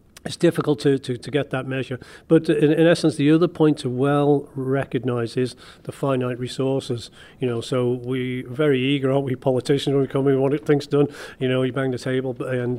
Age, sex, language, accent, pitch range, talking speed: 40-59, male, English, British, 125-140 Hz, 220 wpm